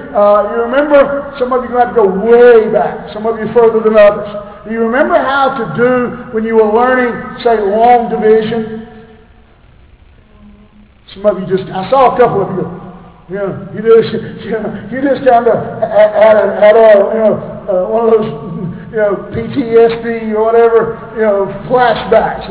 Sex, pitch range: male, 205-250 Hz